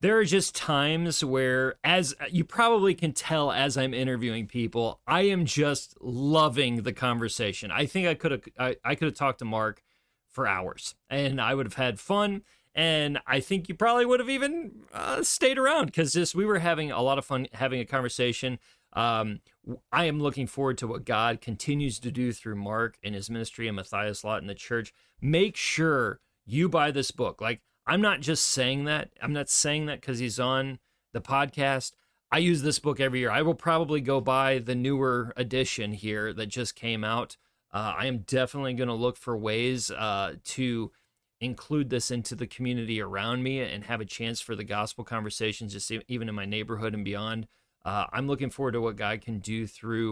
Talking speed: 200 wpm